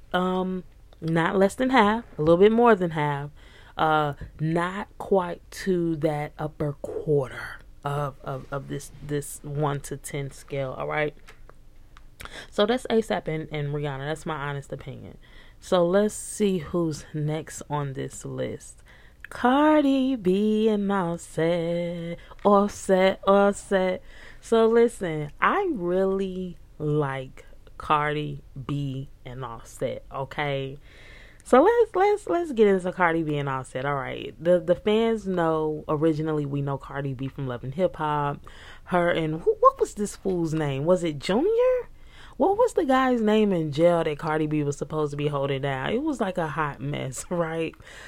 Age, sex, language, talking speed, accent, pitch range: 20-39, female, English, 155 wpm, American, 145-195 Hz